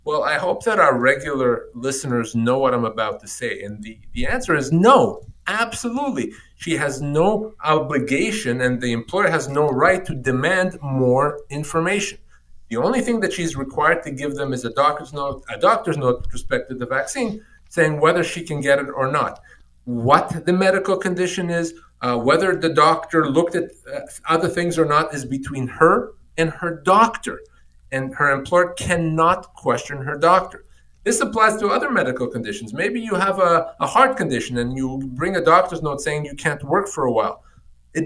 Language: English